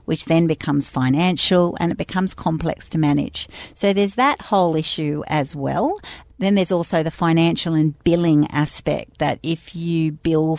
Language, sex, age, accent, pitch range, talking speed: English, female, 50-69, Australian, 140-165 Hz, 165 wpm